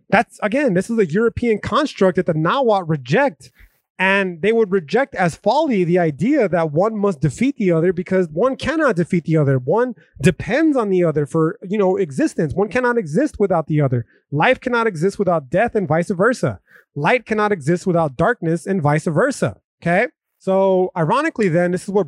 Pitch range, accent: 165-215 Hz, American